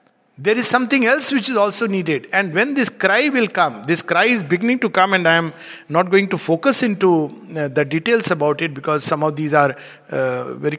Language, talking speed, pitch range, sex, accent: English, 215 wpm, 160-210 Hz, male, Indian